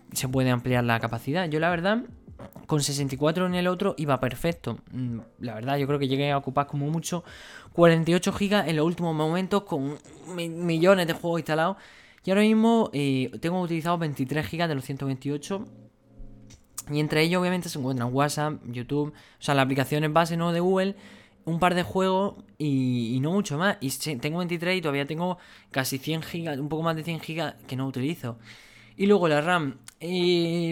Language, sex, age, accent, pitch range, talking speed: Spanish, male, 20-39, Spanish, 130-170 Hz, 185 wpm